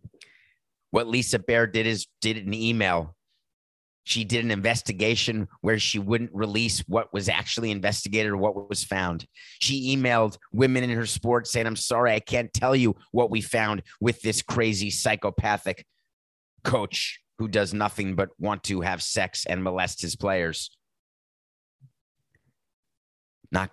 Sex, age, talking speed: male, 30-49, 145 wpm